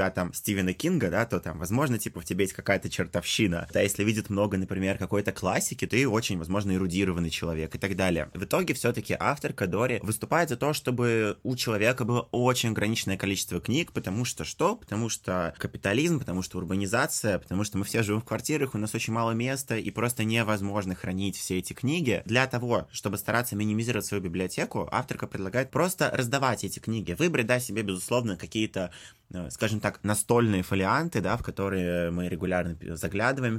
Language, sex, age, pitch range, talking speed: Russian, male, 20-39, 95-120 Hz, 180 wpm